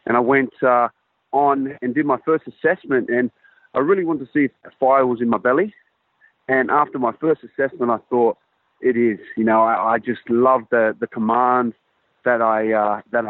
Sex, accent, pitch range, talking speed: male, Australian, 115-130 Hz, 200 wpm